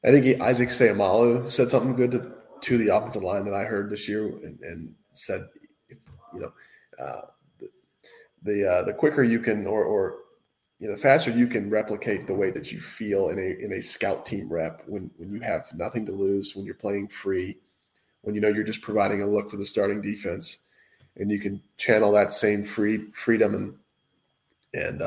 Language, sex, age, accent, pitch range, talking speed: English, male, 30-49, American, 105-125 Hz, 200 wpm